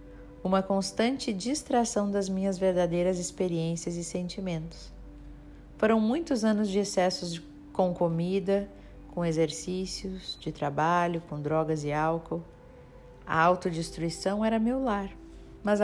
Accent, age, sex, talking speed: Brazilian, 40-59, female, 115 wpm